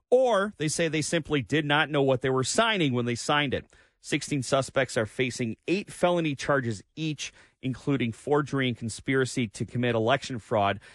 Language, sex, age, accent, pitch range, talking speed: English, male, 30-49, American, 110-145 Hz, 175 wpm